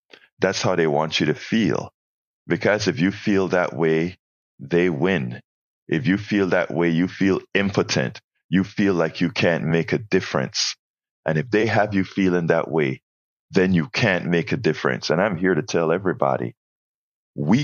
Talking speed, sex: 175 wpm, male